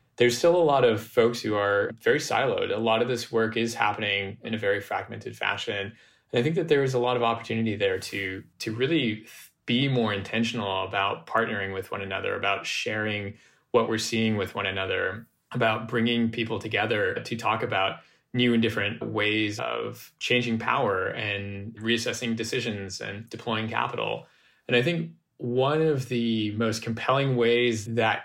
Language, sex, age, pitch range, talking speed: English, male, 20-39, 105-120 Hz, 175 wpm